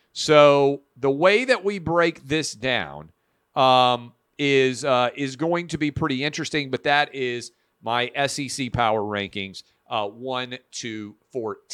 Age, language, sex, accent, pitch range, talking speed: 40-59, English, male, American, 125-170 Hz, 140 wpm